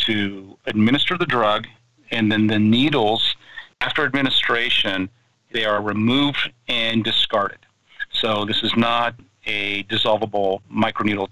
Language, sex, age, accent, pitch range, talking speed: English, male, 40-59, American, 105-120 Hz, 115 wpm